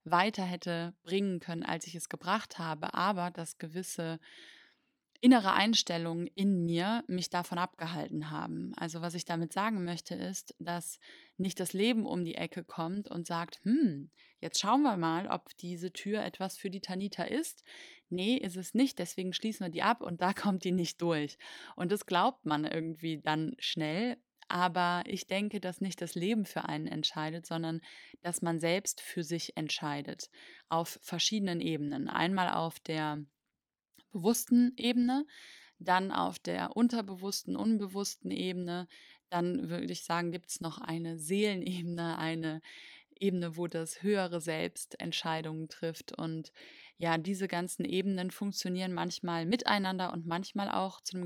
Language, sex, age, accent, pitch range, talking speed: German, female, 20-39, German, 165-195 Hz, 155 wpm